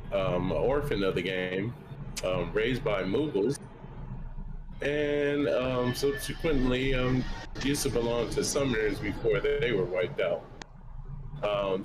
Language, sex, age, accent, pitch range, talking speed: English, male, 30-49, American, 105-145 Hz, 115 wpm